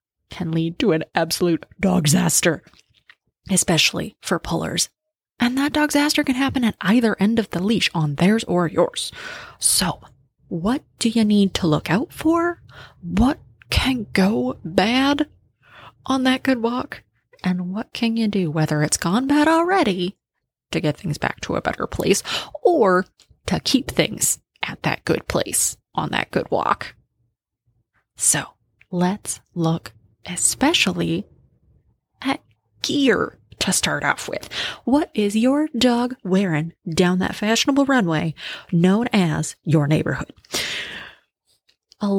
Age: 20-39